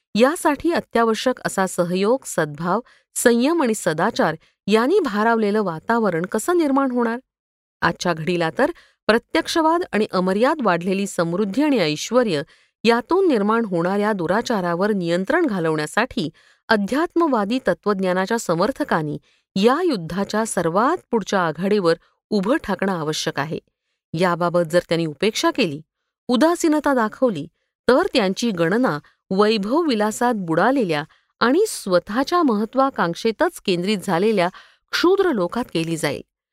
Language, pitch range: Marathi, 175-255 Hz